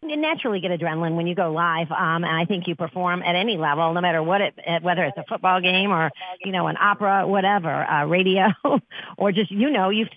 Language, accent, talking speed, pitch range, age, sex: English, American, 230 wpm, 180-235 Hz, 50-69, female